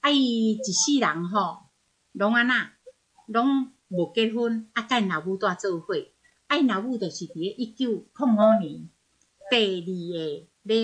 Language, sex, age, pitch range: Chinese, female, 60-79, 185-240 Hz